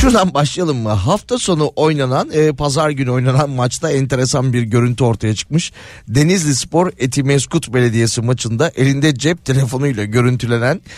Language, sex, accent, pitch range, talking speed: Turkish, male, native, 120-150 Hz, 135 wpm